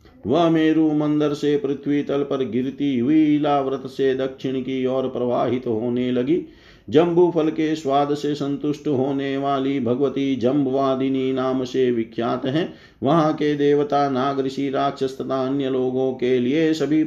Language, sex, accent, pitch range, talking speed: Hindi, male, native, 125-145 Hz, 150 wpm